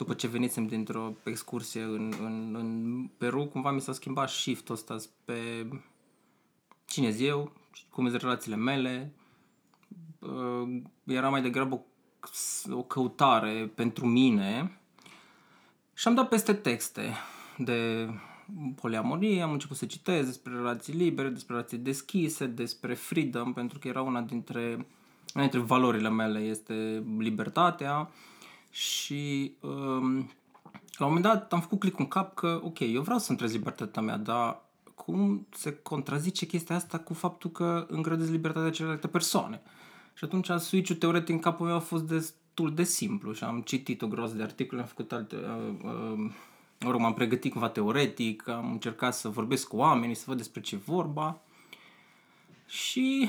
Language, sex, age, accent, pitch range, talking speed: Romanian, male, 20-39, native, 120-175 Hz, 150 wpm